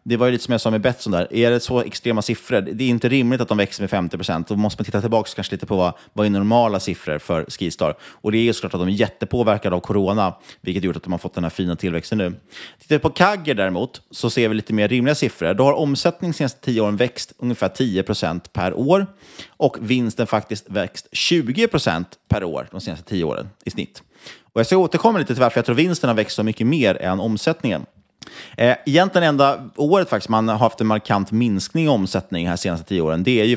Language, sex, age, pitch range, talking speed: Swedish, male, 30-49, 100-135 Hz, 240 wpm